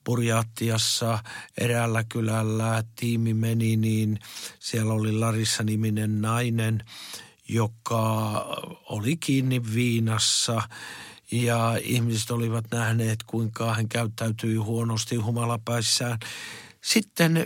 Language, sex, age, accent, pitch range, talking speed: Finnish, male, 50-69, native, 115-140 Hz, 85 wpm